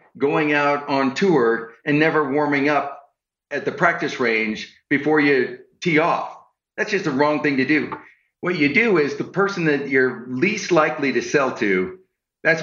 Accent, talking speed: American, 175 wpm